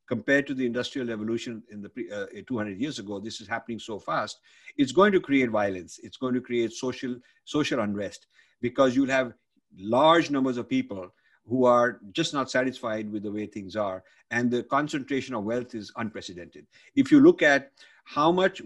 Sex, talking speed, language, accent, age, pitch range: male, 185 wpm, English, Indian, 50-69, 110-135 Hz